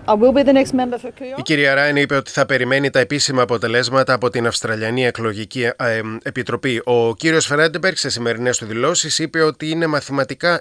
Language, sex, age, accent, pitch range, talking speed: Greek, male, 30-49, native, 120-155 Hz, 145 wpm